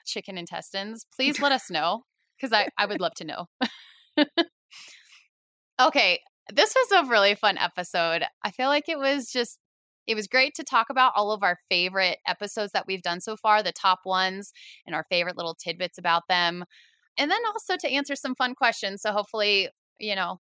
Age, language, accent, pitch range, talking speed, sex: 20-39, English, American, 180-220 Hz, 190 wpm, female